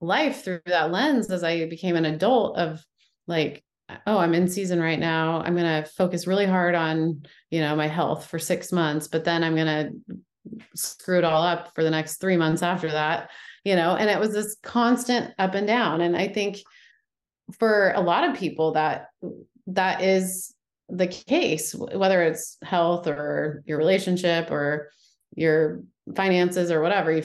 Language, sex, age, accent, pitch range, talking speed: English, female, 30-49, American, 160-190 Hz, 180 wpm